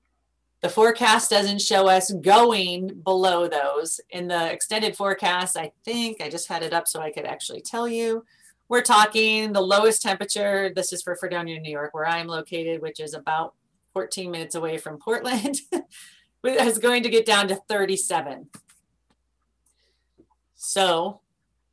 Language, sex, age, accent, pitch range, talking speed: English, female, 30-49, American, 150-185 Hz, 150 wpm